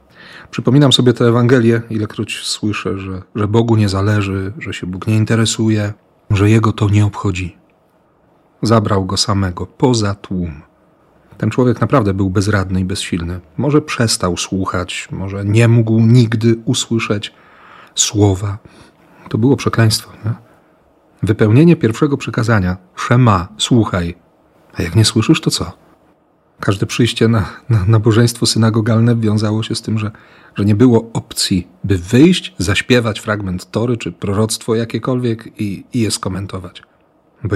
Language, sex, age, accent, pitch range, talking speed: Polish, male, 40-59, native, 100-120 Hz, 135 wpm